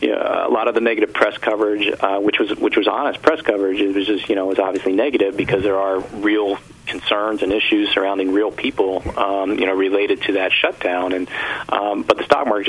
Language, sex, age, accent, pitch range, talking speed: English, male, 40-59, American, 95-105 Hz, 230 wpm